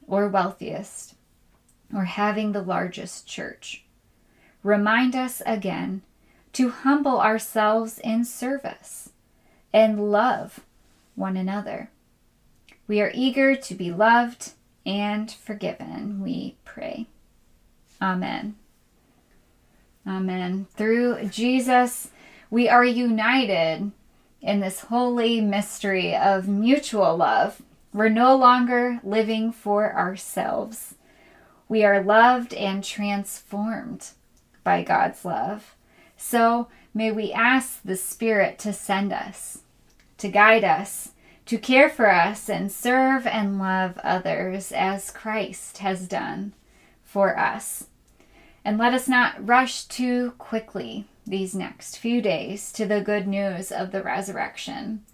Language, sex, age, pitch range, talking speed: English, female, 20-39, 200-240 Hz, 110 wpm